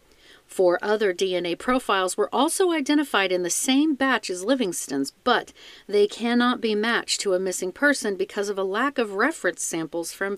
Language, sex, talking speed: English, female, 175 wpm